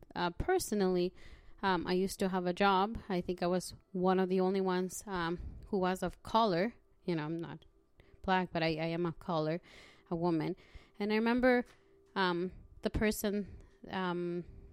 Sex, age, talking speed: female, 20-39, 175 wpm